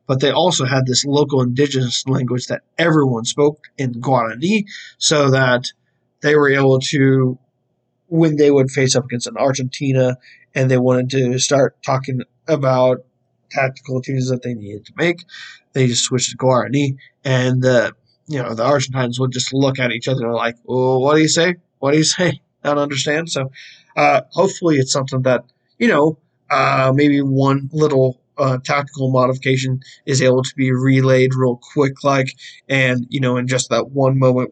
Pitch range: 125-145 Hz